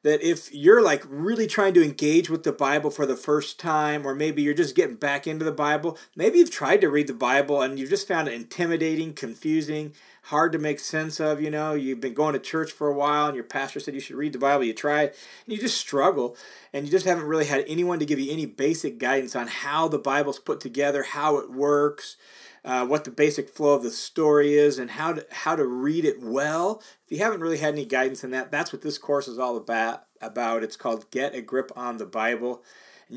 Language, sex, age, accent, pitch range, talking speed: English, male, 30-49, American, 135-160 Hz, 240 wpm